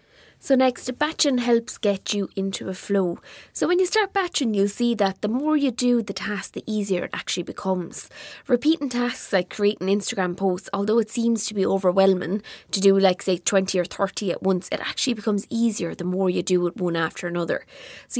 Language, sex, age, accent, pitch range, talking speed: English, female, 20-39, Irish, 190-235 Hz, 205 wpm